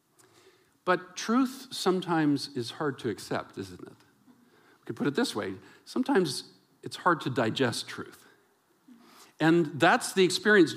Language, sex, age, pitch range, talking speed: English, male, 50-69, 130-180 Hz, 140 wpm